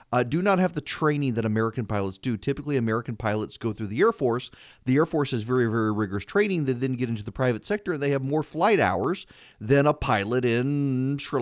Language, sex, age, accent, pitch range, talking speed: English, male, 30-49, American, 115-150 Hz, 230 wpm